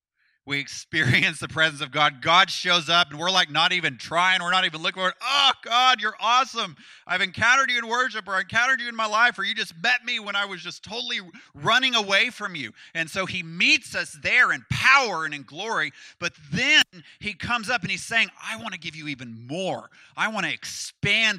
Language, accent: English, American